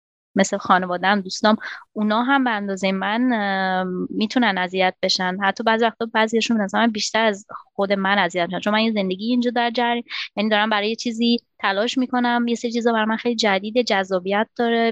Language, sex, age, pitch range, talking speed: Persian, female, 20-39, 195-235 Hz, 170 wpm